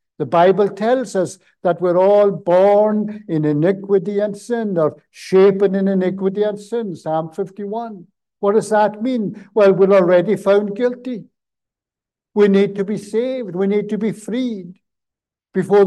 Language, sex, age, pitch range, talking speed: English, male, 60-79, 170-210 Hz, 150 wpm